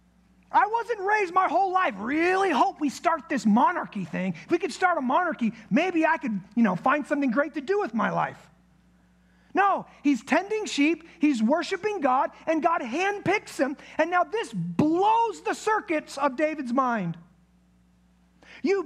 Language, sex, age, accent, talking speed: English, male, 30-49, American, 170 wpm